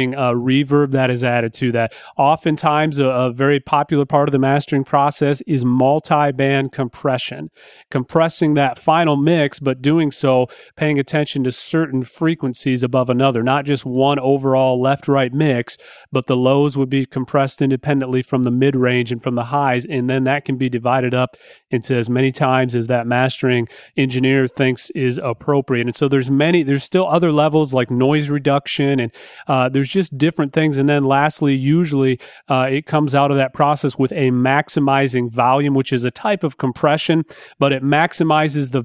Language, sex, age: English, male, 30-49